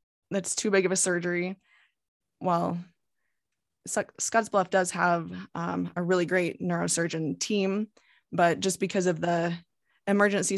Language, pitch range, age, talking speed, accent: English, 170-195 Hz, 20-39, 135 wpm, American